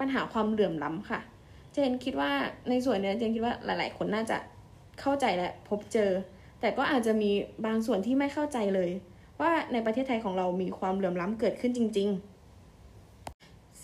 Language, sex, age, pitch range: Thai, female, 20-39, 200-260 Hz